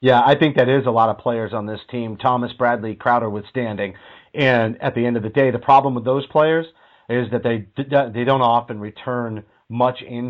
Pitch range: 110-130 Hz